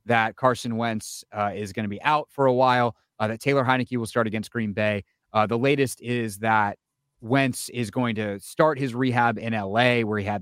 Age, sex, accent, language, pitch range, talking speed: 30-49, male, American, English, 105-130 Hz, 220 wpm